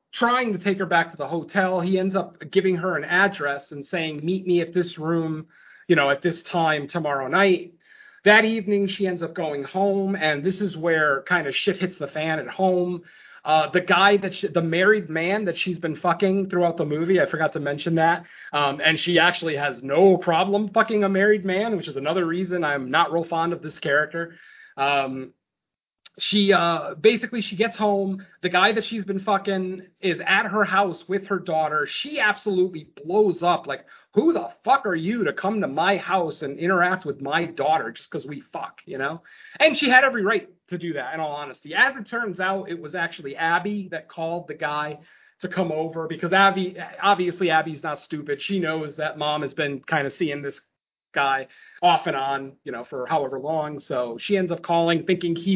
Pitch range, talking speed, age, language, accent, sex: 155-195 Hz, 210 wpm, 30-49, English, American, male